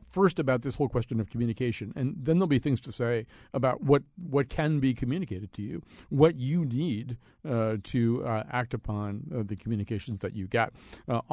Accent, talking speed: American, 195 wpm